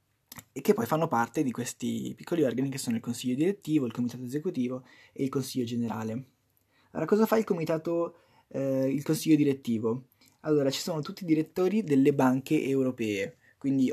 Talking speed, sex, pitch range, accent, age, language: 170 wpm, male, 125-160 Hz, native, 20-39, Italian